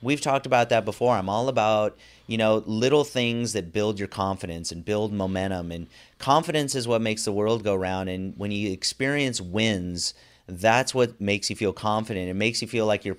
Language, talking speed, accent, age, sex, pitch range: English, 205 wpm, American, 30-49, male, 95-115 Hz